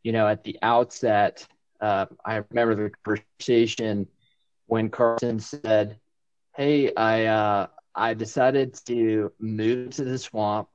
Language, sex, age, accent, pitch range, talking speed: English, male, 20-39, American, 110-125 Hz, 130 wpm